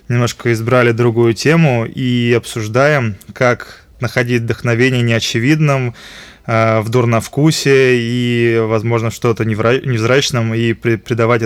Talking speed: 100 wpm